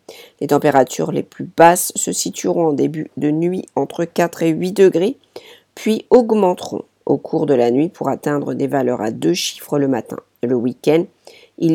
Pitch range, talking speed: 140-205 Hz, 180 wpm